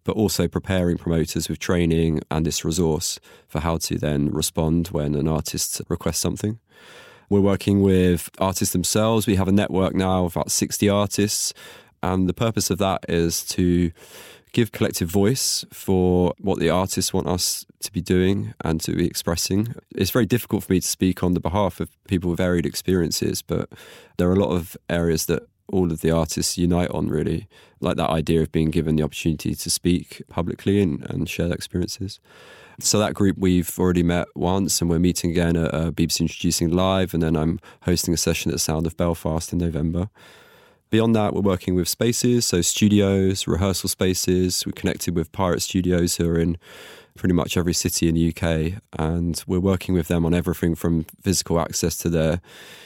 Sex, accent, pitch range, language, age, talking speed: male, British, 85-95 Hz, English, 20-39, 190 wpm